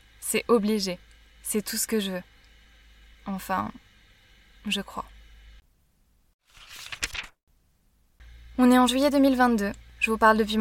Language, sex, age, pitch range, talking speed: French, female, 20-39, 185-220 Hz, 115 wpm